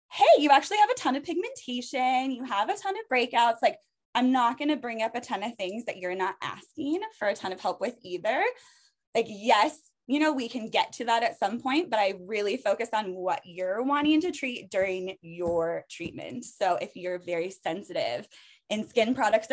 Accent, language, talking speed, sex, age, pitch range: American, English, 210 wpm, female, 20-39, 185-265 Hz